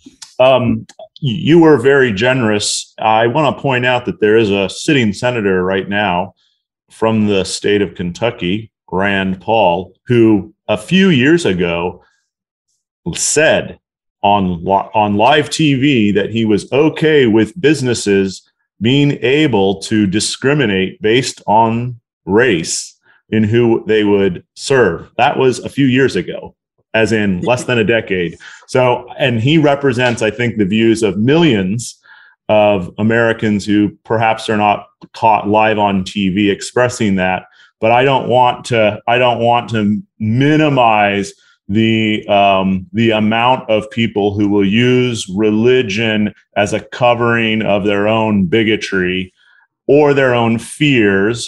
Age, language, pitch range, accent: 40-59, English, 100-120 Hz, American